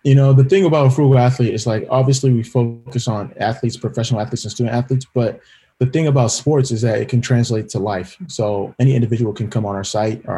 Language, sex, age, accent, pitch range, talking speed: English, male, 20-39, American, 105-125 Hz, 235 wpm